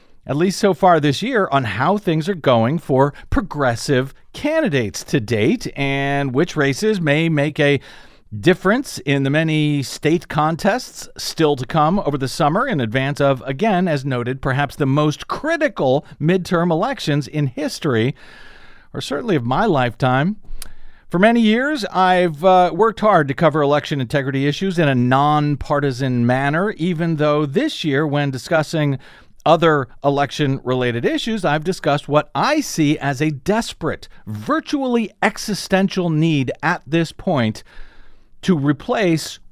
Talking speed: 145 wpm